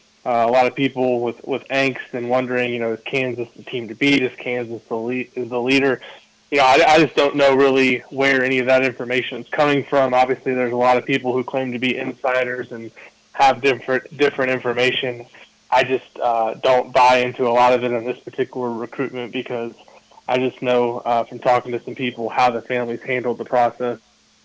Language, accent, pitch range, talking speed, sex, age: English, American, 125-135 Hz, 215 wpm, male, 20-39